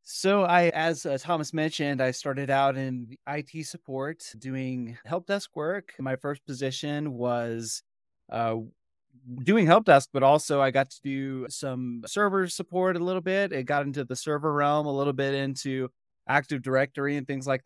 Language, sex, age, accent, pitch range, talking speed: English, male, 30-49, American, 135-165 Hz, 170 wpm